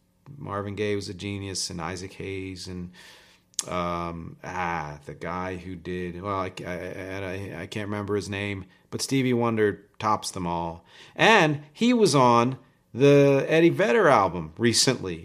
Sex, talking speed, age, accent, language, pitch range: male, 155 wpm, 40-59, American, English, 100-140 Hz